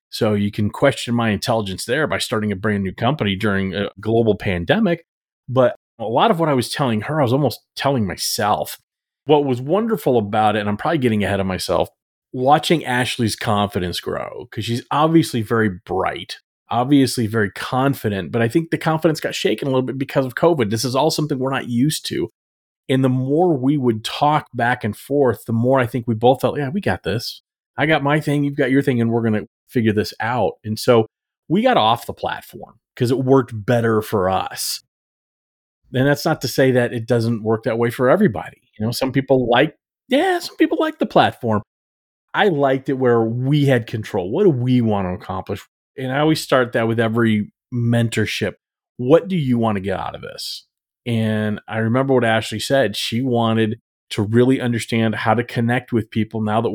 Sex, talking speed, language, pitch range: male, 205 wpm, English, 110-135 Hz